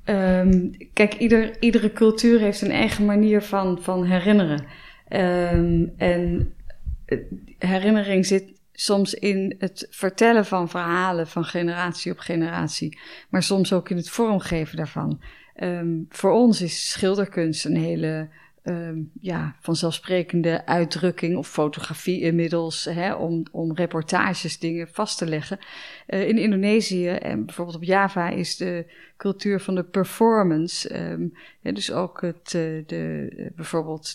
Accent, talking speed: Dutch, 125 wpm